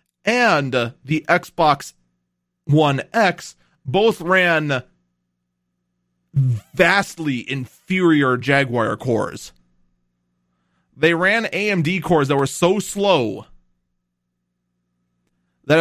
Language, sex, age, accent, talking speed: English, male, 30-49, American, 75 wpm